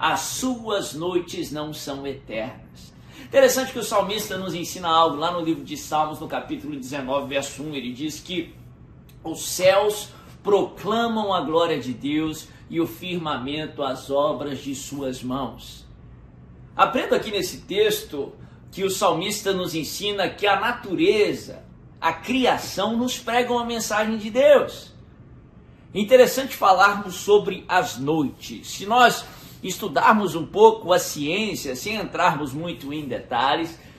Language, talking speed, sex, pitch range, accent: Portuguese, 140 wpm, male, 155-245 Hz, Brazilian